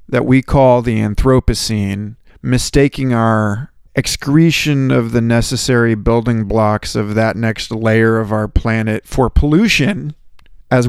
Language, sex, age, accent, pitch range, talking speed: English, male, 40-59, American, 110-130 Hz, 125 wpm